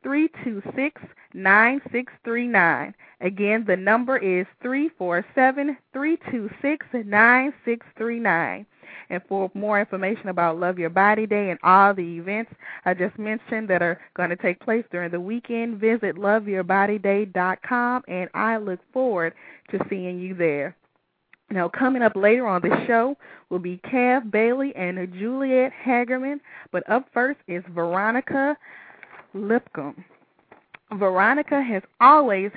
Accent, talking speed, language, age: American, 145 wpm, English, 20-39